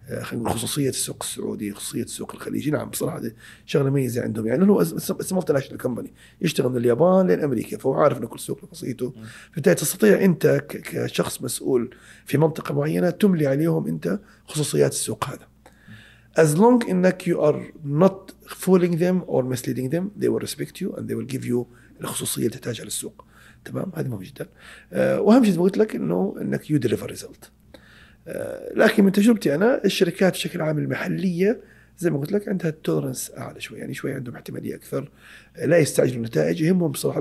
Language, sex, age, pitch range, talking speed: Arabic, male, 40-59, 130-190 Hz, 170 wpm